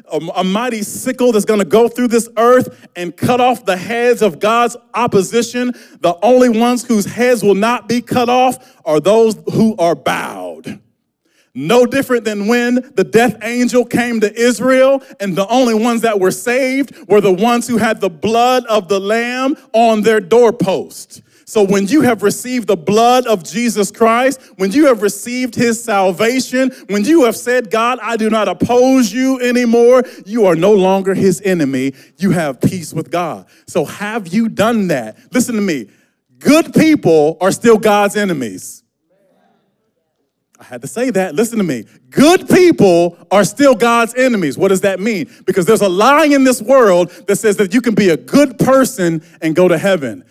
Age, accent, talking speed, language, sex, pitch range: 30-49, American, 180 wpm, English, male, 195-245 Hz